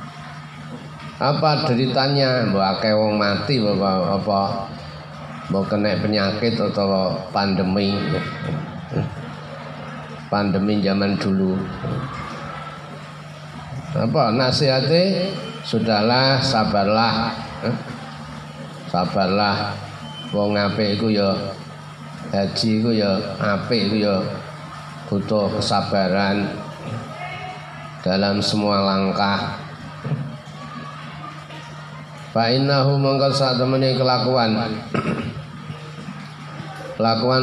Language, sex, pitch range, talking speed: Indonesian, male, 100-120 Hz, 65 wpm